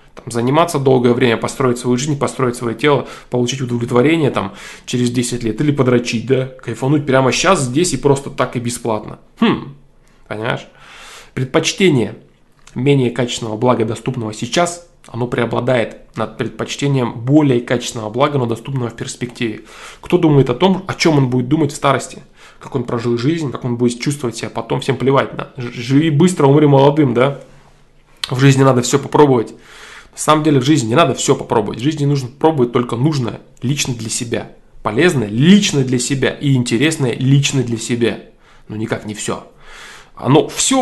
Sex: male